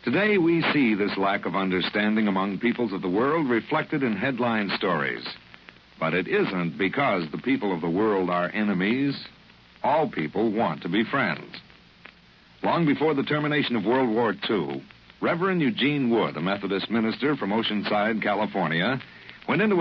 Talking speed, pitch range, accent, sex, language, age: 160 wpm, 95-135 Hz, American, male, English, 60-79